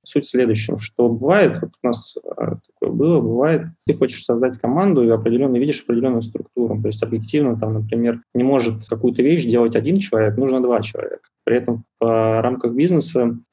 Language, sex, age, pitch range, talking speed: Russian, male, 20-39, 115-130 Hz, 180 wpm